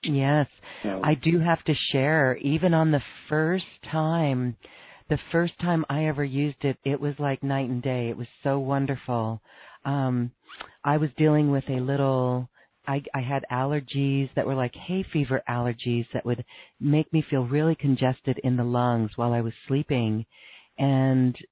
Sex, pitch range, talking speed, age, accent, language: female, 125-145 Hz, 165 wpm, 40-59, American, English